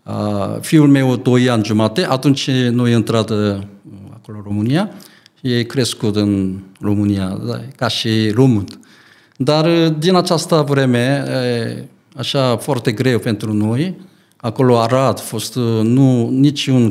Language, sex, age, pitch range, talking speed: Romanian, male, 50-69, 115-150 Hz, 110 wpm